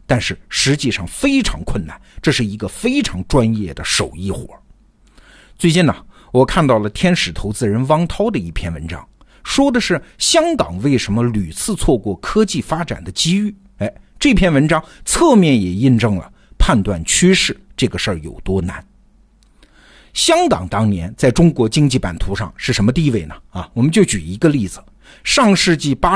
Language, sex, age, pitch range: Chinese, male, 50-69, 110-185 Hz